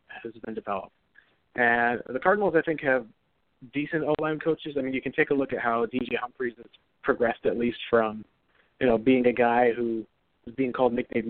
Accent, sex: American, male